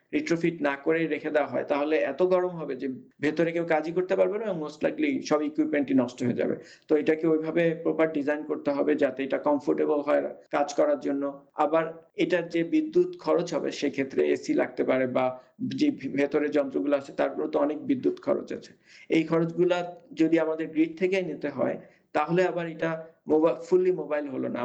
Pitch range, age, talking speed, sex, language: 145-170 Hz, 50-69, 75 wpm, male, Bengali